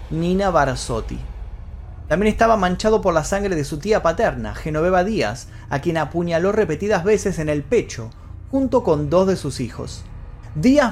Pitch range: 130-205 Hz